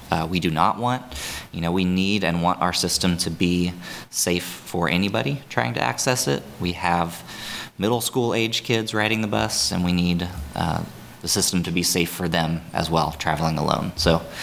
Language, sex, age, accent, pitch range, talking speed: English, male, 20-39, American, 85-95 Hz, 195 wpm